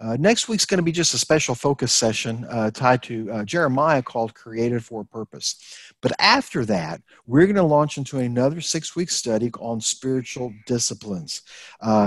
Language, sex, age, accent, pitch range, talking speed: English, male, 50-69, American, 120-165 Hz, 180 wpm